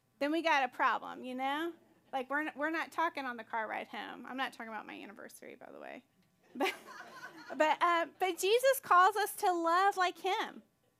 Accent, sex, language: American, female, English